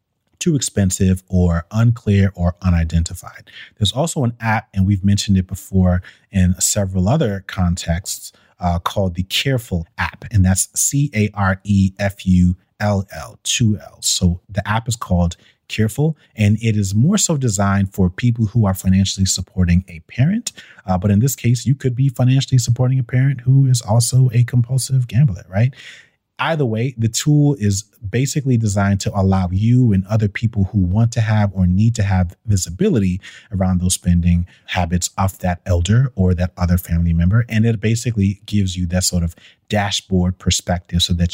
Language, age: English, 30-49